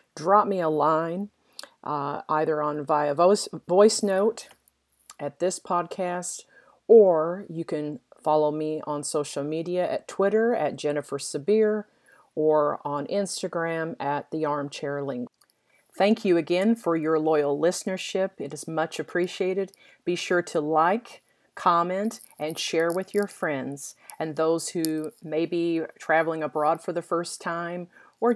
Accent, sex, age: American, female, 40-59